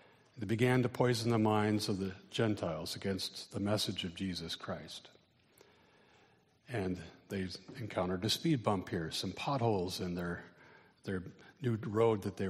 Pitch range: 105-130 Hz